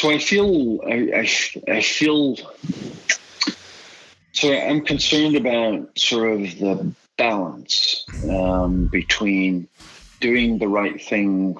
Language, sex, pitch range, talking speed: English, male, 95-115 Hz, 110 wpm